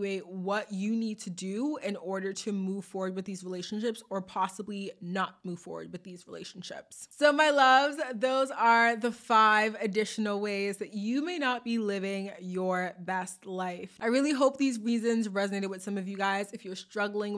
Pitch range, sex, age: 190-235 Hz, female, 20-39